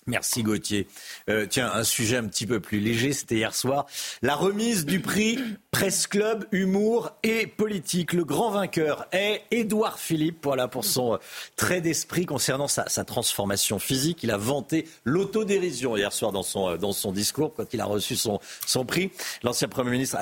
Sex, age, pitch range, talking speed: male, 50-69, 115-175 Hz, 180 wpm